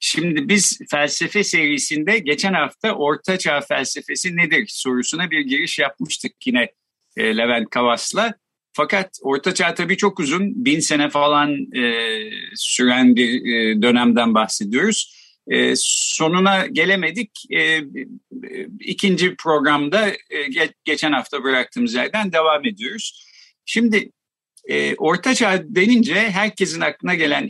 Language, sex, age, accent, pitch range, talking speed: Turkish, male, 50-69, native, 145-215 Hz, 105 wpm